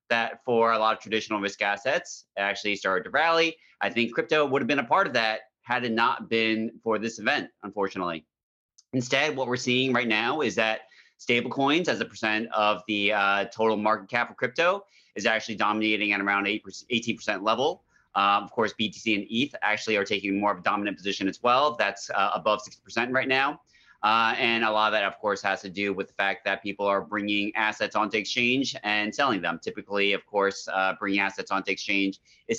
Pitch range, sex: 100-120 Hz, male